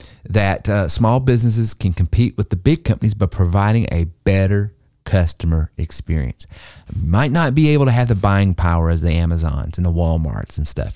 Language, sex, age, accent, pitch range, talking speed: English, male, 40-59, American, 90-120 Hz, 185 wpm